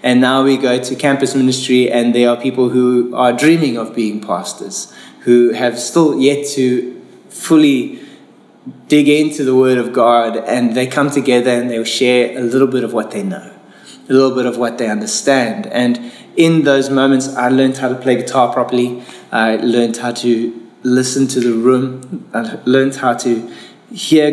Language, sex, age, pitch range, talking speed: English, male, 20-39, 120-140 Hz, 185 wpm